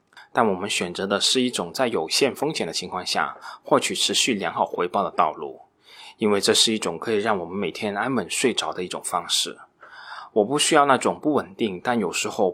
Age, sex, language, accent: 20-39, male, Chinese, native